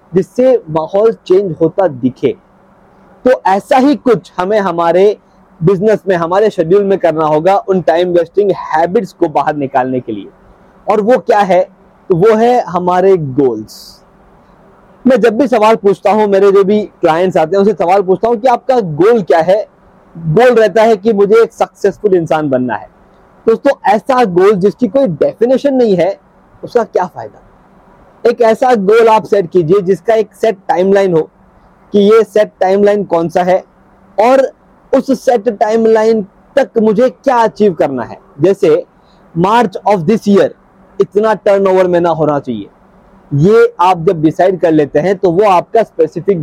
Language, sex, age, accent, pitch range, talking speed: Hindi, male, 30-49, native, 175-220 Hz, 160 wpm